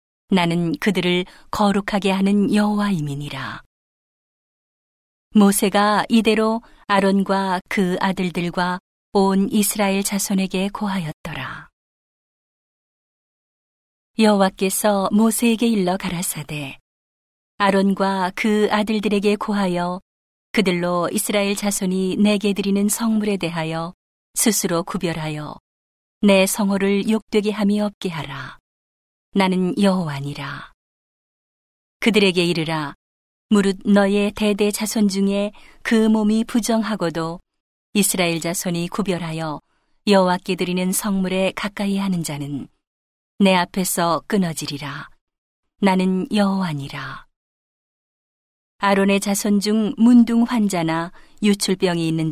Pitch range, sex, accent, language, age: 175-210 Hz, female, native, Korean, 40-59